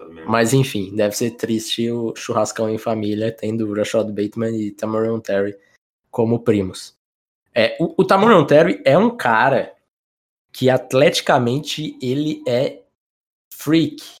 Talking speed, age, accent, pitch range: 130 wpm, 20-39, Brazilian, 115-150 Hz